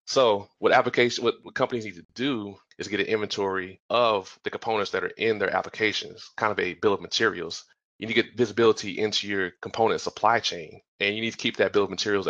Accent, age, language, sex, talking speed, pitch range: American, 30-49, English, male, 220 wpm, 95-110 Hz